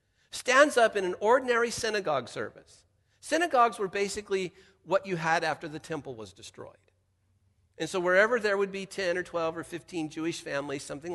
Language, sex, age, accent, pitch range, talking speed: English, male, 50-69, American, 145-215 Hz, 170 wpm